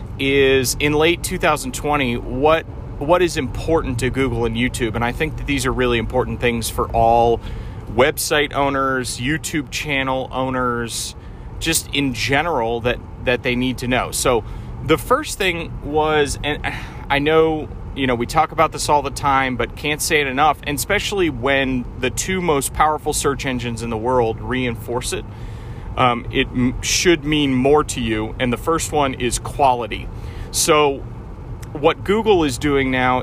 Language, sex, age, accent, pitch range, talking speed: English, male, 30-49, American, 115-145 Hz, 165 wpm